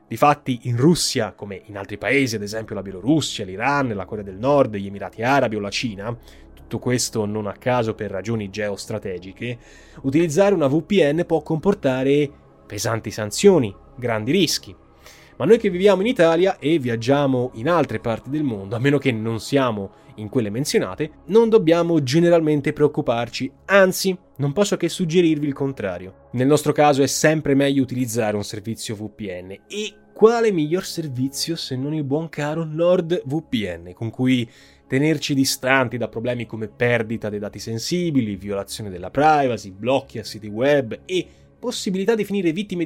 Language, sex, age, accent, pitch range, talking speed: Italian, male, 20-39, native, 110-160 Hz, 160 wpm